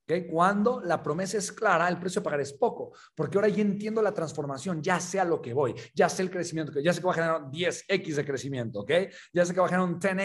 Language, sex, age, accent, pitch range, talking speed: Spanish, male, 40-59, Mexican, 170-215 Hz, 265 wpm